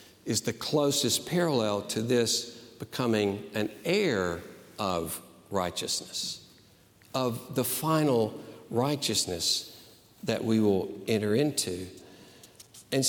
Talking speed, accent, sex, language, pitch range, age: 95 wpm, American, male, English, 120-155 Hz, 60-79